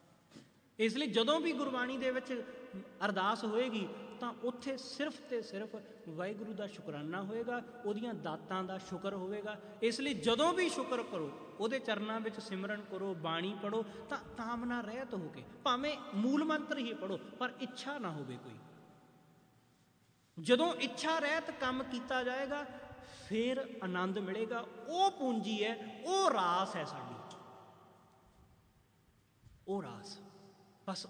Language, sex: English, male